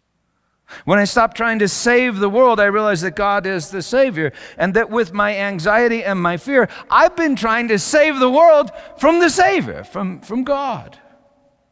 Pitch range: 195-250 Hz